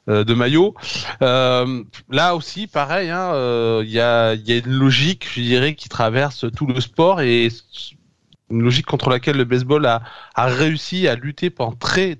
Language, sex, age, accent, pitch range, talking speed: French, male, 30-49, French, 120-155 Hz, 175 wpm